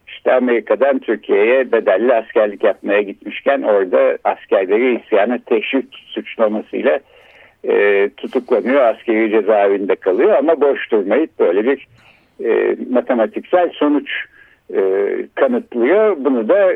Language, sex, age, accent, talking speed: Turkish, male, 60-79, native, 95 wpm